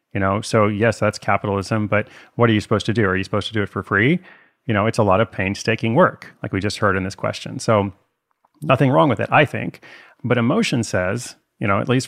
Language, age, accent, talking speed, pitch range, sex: English, 30-49, American, 250 wpm, 105-125 Hz, male